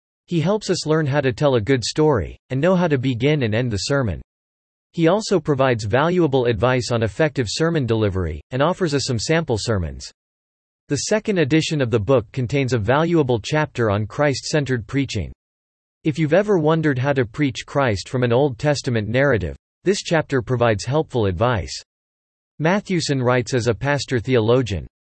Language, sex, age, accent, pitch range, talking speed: English, male, 40-59, American, 110-150 Hz, 170 wpm